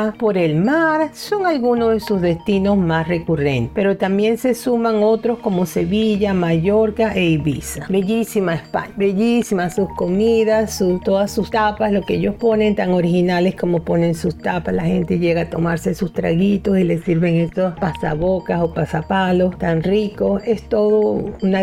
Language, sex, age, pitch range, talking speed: Spanish, female, 50-69, 170-215 Hz, 160 wpm